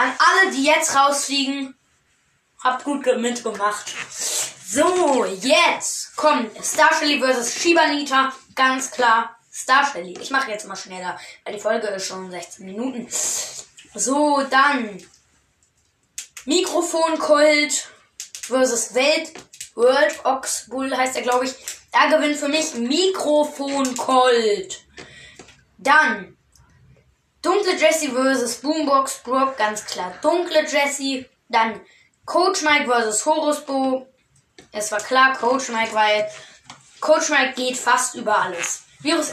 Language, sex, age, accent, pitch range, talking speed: German, female, 20-39, German, 235-300 Hz, 115 wpm